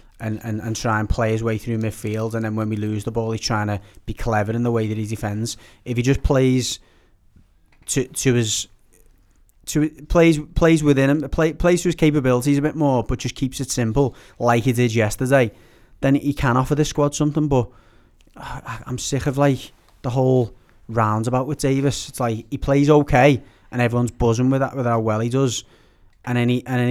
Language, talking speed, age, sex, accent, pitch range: English, 205 wpm, 30-49, male, British, 110-130 Hz